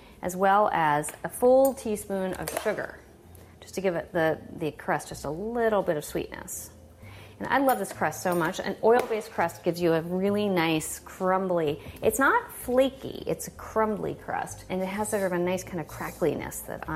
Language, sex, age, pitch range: English, female, 40-59, 165-210 Hz